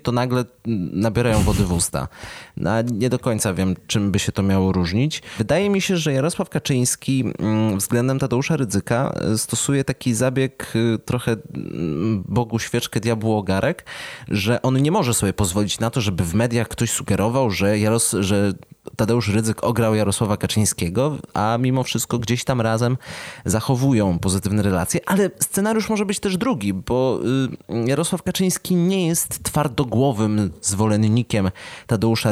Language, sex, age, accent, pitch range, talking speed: Polish, male, 20-39, native, 100-125 Hz, 145 wpm